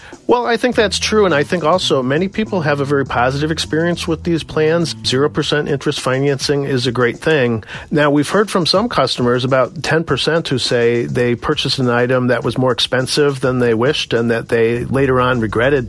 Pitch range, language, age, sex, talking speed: 120-155 Hz, English, 50-69, male, 200 wpm